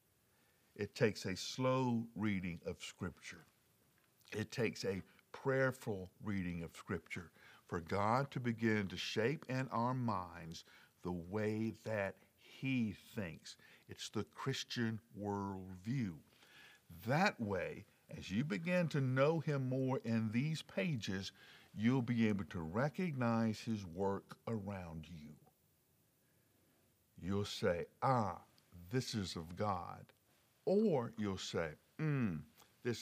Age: 60-79